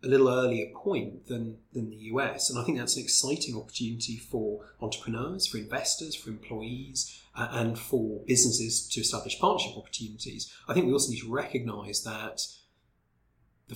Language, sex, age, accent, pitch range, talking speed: English, male, 30-49, British, 110-125 Hz, 160 wpm